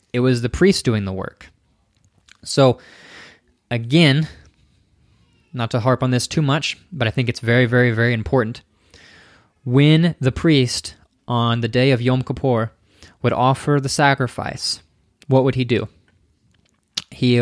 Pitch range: 110-135 Hz